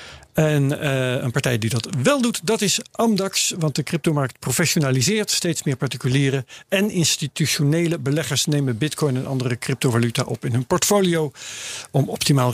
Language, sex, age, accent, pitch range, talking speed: Dutch, male, 50-69, Dutch, 130-165 Hz, 155 wpm